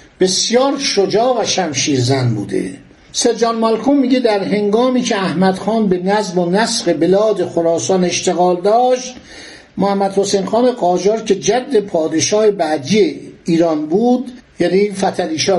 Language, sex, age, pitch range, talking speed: Persian, male, 60-79, 165-225 Hz, 130 wpm